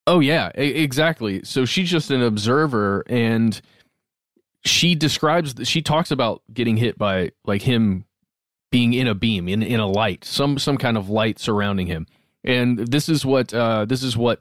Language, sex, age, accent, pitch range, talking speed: English, male, 20-39, American, 110-140 Hz, 175 wpm